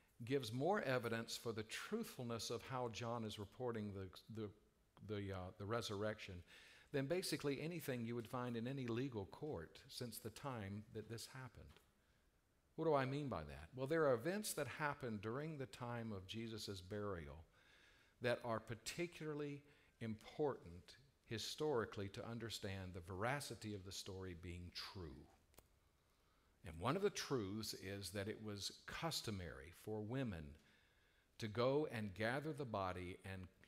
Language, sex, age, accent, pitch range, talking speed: English, male, 50-69, American, 95-125 Hz, 150 wpm